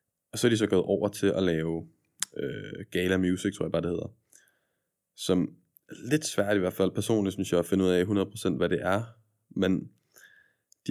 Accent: native